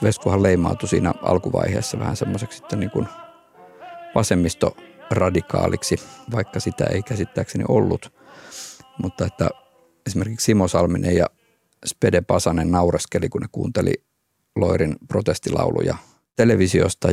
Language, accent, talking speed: Finnish, native, 100 wpm